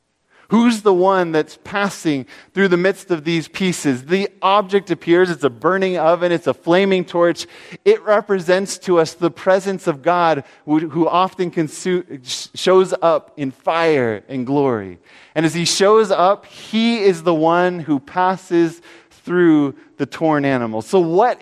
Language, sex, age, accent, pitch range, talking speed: English, male, 30-49, American, 145-195 Hz, 155 wpm